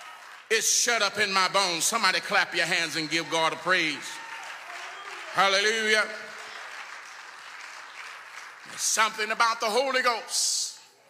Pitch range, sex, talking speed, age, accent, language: 190-245 Hz, male, 120 wpm, 40-59, American, English